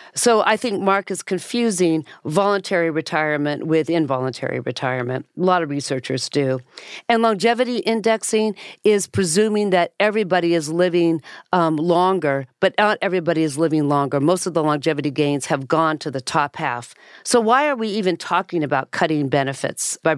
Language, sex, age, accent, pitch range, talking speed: English, female, 50-69, American, 155-195 Hz, 160 wpm